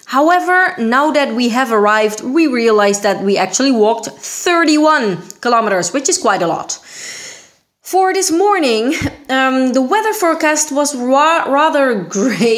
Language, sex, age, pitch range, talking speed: Italian, female, 20-39, 215-300 Hz, 140 wpm